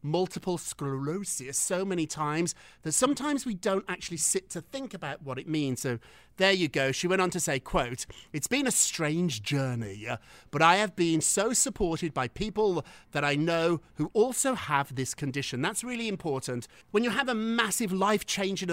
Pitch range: 140-195 Hz